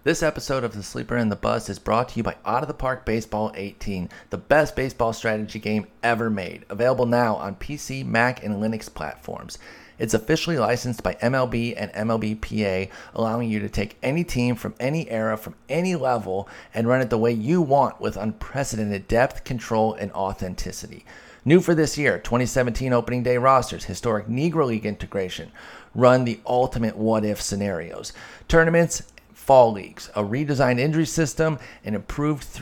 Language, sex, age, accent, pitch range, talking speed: English, male, 30-49, American, 110-135 Hz, 170 wpm